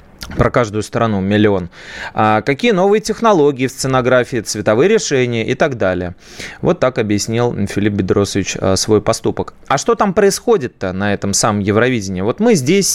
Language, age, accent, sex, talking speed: Russian, 30-49, native, male, 150 wpm